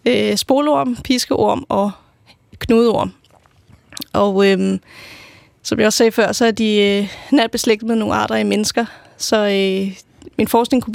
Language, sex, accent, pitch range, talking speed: Danish, female, native, 200-235 Hz, 140 wpm